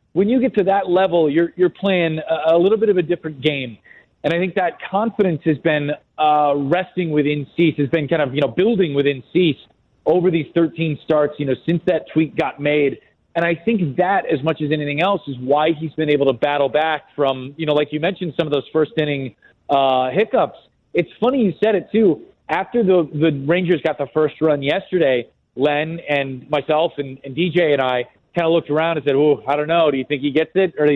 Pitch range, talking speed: 145-175 Hz, 230 wpm